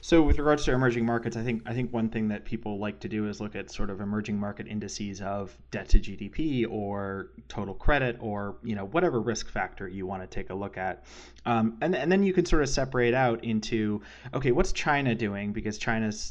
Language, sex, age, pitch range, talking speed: English, male, 20-39, 100-115 Hz, 230 wpm